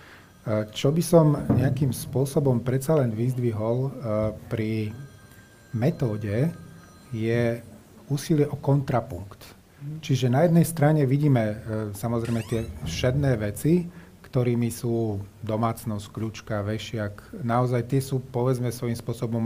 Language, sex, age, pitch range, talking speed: Slovak, male, 30-49, 110-130 Hz, 105 wpm